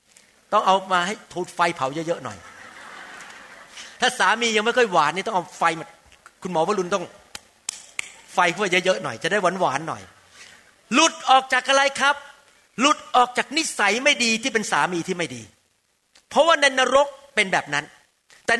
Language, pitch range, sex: Thai, 175-260 Hz, male